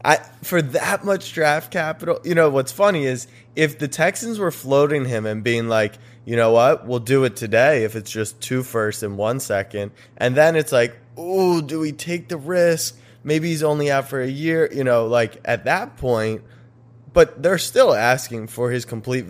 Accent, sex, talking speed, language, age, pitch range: American, male, 200 wpm, English, 20-39, 115-150 Hz